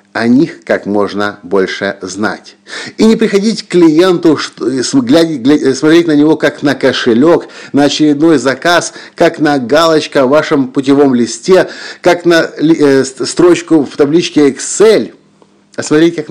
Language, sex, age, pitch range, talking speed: Russian, male, 50-69, 120-170 Hz, 135 wpm